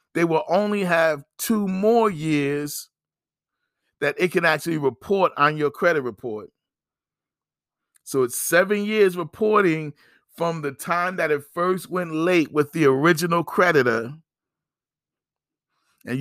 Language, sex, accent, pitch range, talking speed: English, male, American, 140-175 Hz, 125 wpm